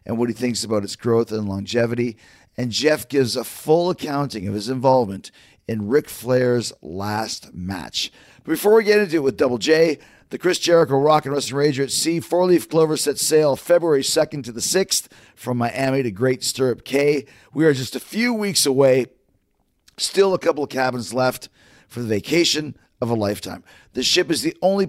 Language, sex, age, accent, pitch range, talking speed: English, male, 40-59, American, 115-150 Hz, 195 wpm